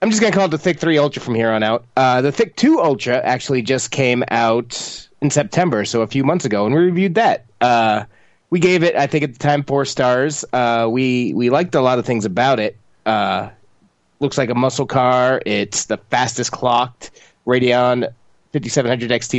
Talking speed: 205 wpm